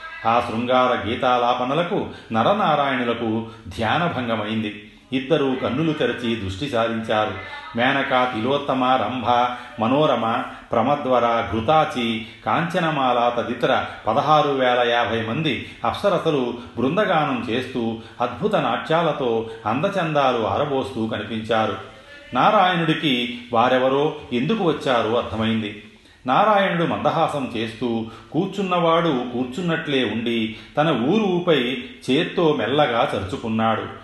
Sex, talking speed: male, 80 wpm